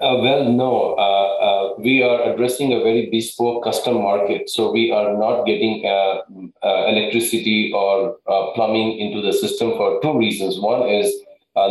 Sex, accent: male, Indian